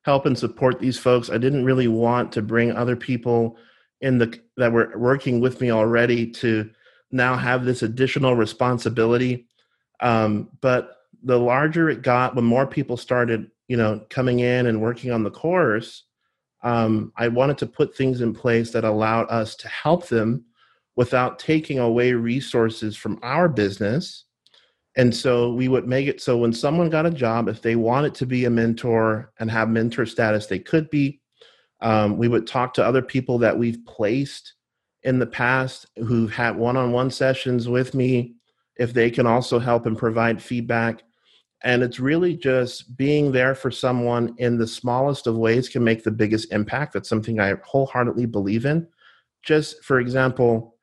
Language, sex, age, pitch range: English, male, 30-49, 115-130 Hz